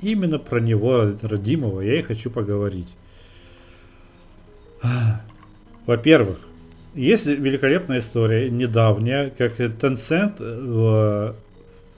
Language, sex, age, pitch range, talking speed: Russian, male, 40-59, 105-130 Hz, 80 wpm